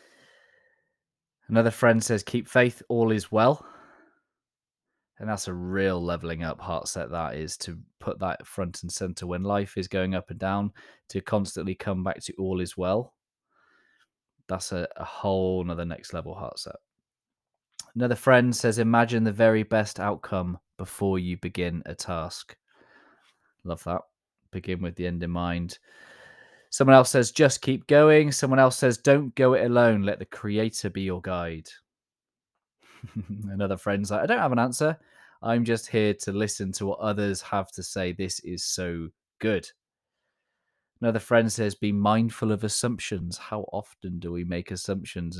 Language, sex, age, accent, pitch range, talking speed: English, male, 20-39, British, 90-115 Hz, 165 wpm